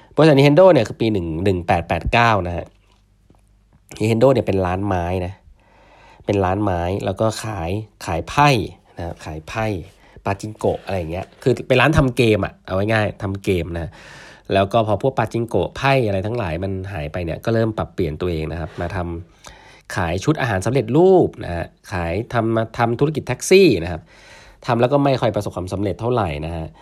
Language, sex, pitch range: English, male, 90-115 Hz